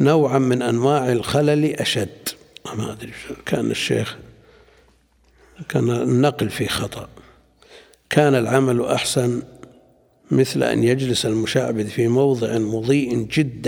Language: Arabic